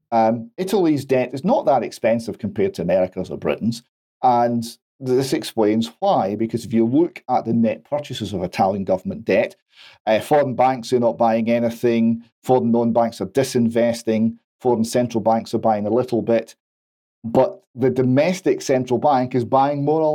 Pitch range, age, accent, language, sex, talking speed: 115-135 Hz, 40-59, British, English, male, 170 wpm